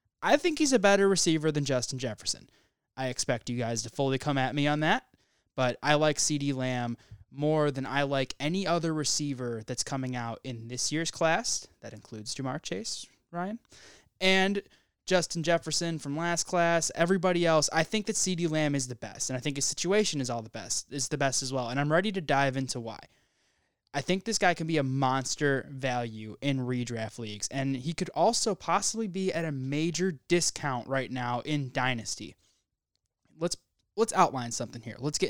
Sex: male